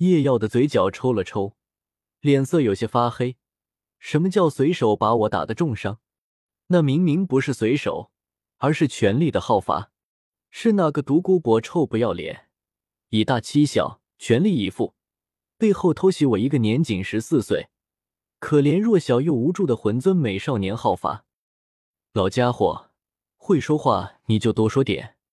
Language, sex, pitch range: Chinese, male, 110-155 Hz